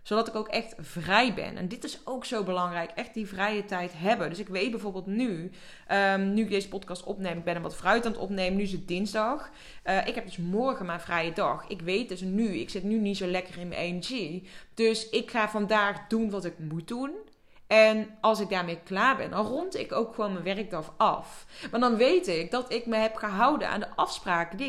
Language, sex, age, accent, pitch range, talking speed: Dutch, female, 20-39, Dutch, 185-225 Hz, 235 wpm